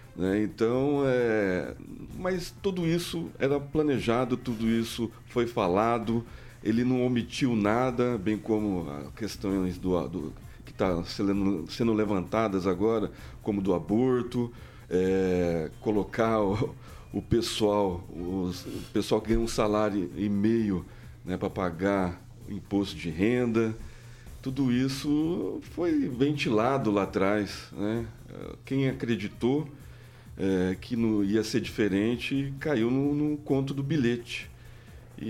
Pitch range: 100-130 Hz